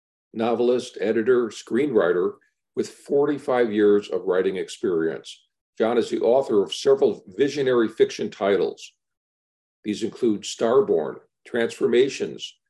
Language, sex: English, male